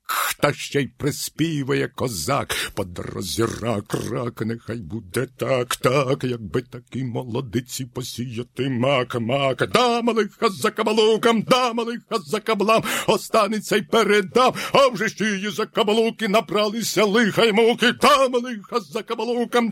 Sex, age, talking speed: male, 50-69, 120 wpm